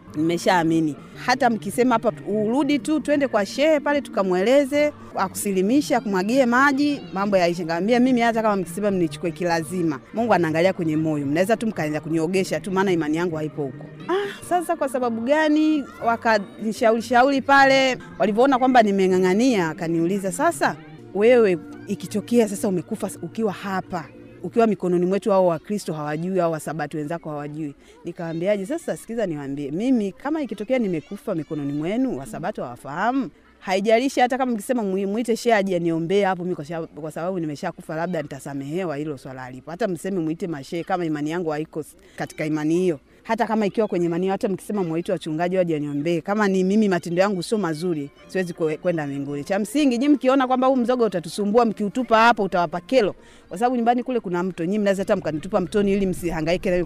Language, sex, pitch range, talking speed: Swahili, female, 170-235 Hz, 160 wpm